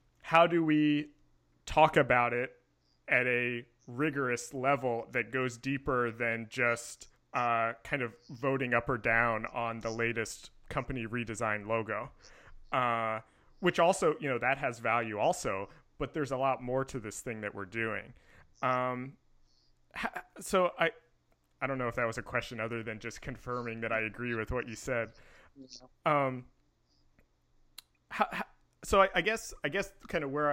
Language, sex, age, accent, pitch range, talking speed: English, male, 30-49, American, 115-140 Hz, 155 wpm